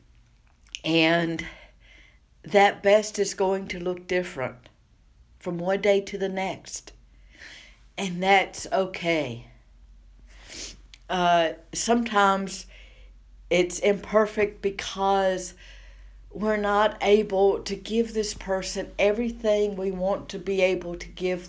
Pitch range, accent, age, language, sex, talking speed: 155-195 Hz, American, 60-79, English, female, 105 wpm